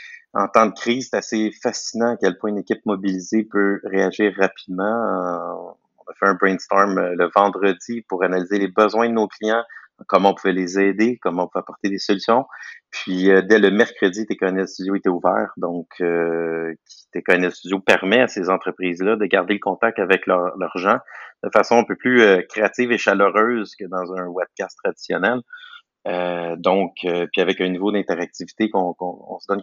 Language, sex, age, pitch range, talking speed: French, male, 30-49, 95-110 Hz, 180 wpm